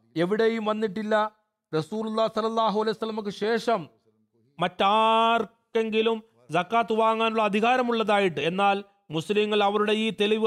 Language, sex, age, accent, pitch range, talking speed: Malayalam, male, 40-59, native, 200-225 Hz, 90 wpm